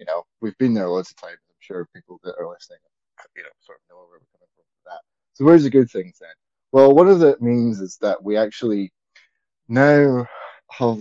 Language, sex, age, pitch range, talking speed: English, male, 20-39, 110-165 Hz, 205 wpm